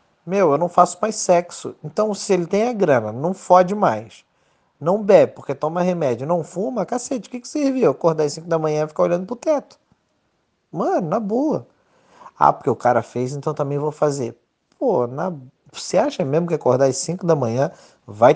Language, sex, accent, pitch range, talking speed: Portuguese, male, Brazilian, 140-200 Hz, 200 wpm